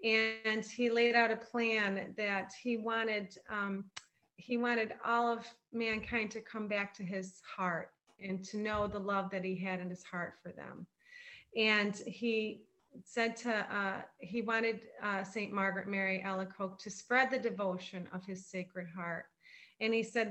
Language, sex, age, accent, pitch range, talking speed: English, female, 30-49, American, 195-230 Hz, 170 wpm